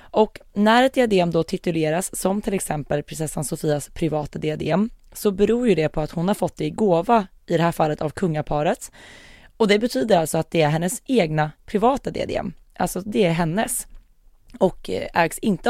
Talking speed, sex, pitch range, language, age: 185 wpm, female, 160-205 Hz, Swedish, 20-39